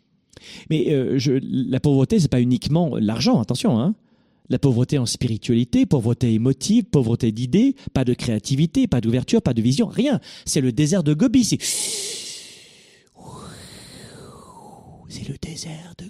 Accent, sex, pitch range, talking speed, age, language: French, male, 125-180 Hz, 145 wpm, 40-59, French